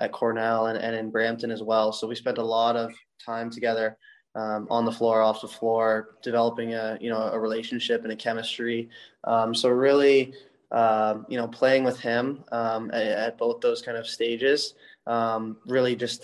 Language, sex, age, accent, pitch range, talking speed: English, male, 20-39, American, 115-120 Hz, 190 wpm